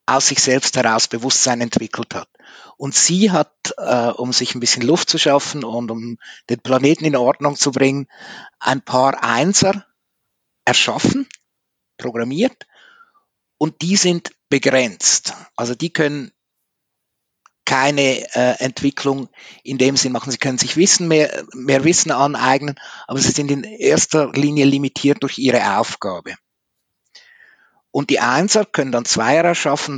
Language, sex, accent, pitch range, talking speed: German, male, Austrian, 125-155 Hz, 140 wpm